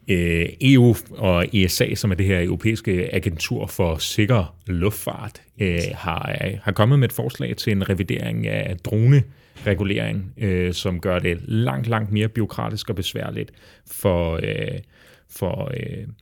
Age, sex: 30-49, male